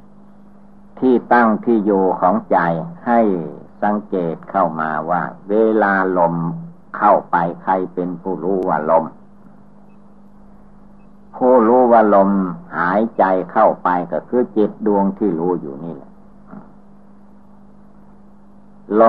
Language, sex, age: Thai, male, 60-79